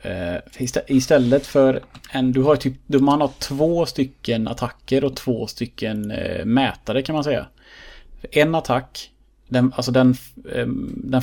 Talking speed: 150 wpm